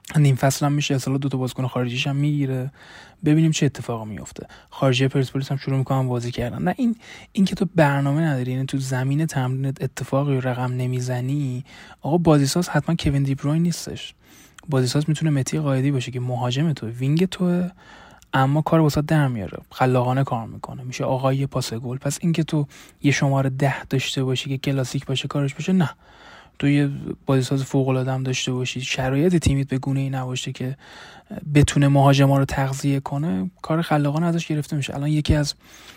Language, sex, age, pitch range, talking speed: Persian, male, 20-39, 130-150 Hz, 175 wpm